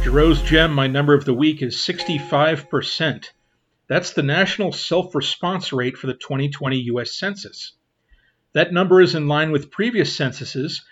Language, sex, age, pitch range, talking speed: English, male, 40-59, 135-160 Hz, 155 wpm